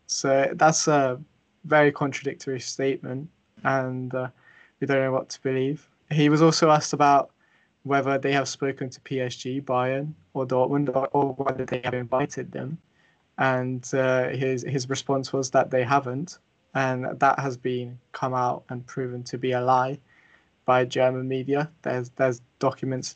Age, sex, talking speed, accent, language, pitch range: 20-39, male, 160 wpm, British, English, 130-140 Hz